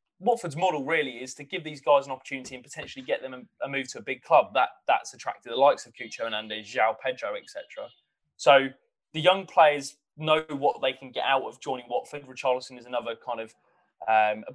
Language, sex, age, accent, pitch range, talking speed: English, male, 20-39, British, 130-155 Hz, 215 wpm